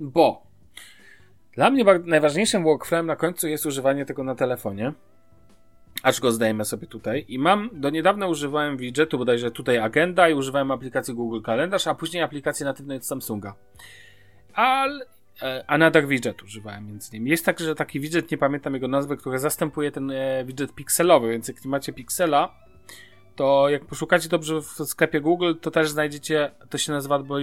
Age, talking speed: 30-49, 165 wpm